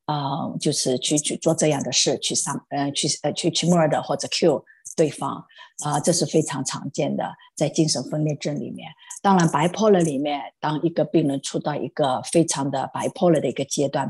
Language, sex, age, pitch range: Chinese, female, 50-69, 145-180 Hz